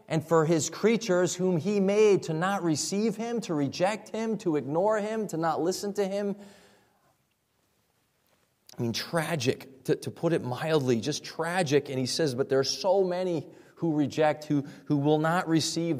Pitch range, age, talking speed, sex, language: 140-180 Hz, 30-49, 175 wpm, male, English